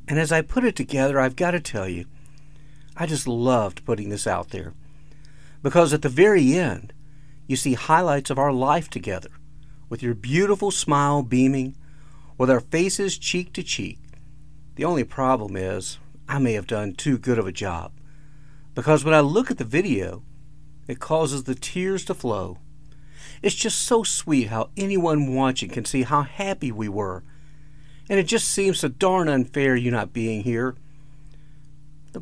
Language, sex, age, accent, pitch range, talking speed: English, male, 50-69, American, 120-150 Hz, 170 wpm